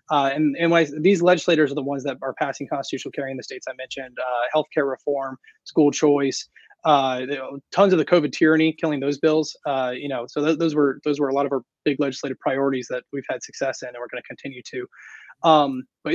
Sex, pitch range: male, 135-165 Hz